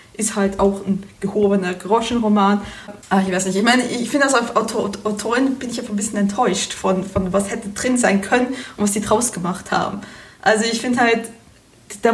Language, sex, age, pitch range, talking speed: German, female, 20-39, 205-240 Hz, 210 wpm